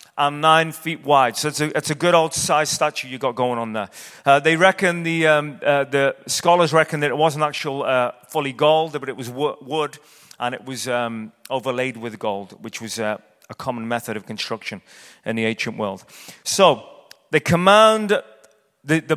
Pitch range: 135-170 Hz